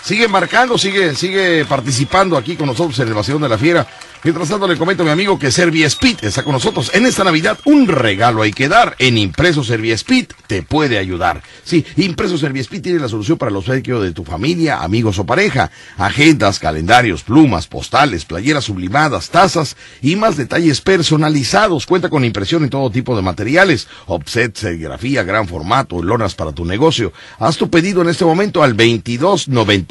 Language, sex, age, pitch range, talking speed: Spanish, male, 50-69, 100-165 Hz, 180 wpm